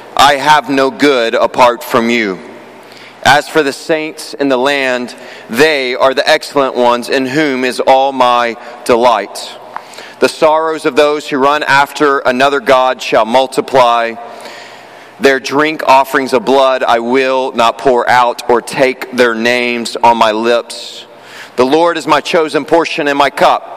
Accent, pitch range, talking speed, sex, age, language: American, 125-155 Hz, 155 wpm, male, 30-49, English